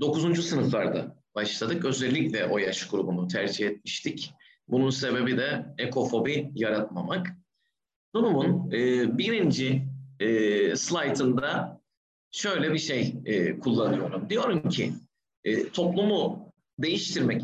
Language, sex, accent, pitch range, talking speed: Turkish, male, native, 115-170 Hz, 85 wpm